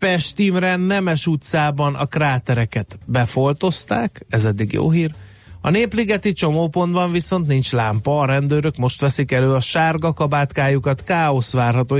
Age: 30-49